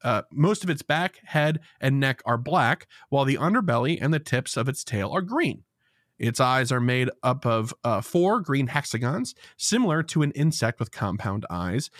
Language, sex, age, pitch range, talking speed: English, male, 30-49, 120-170 Hz, 190 wpm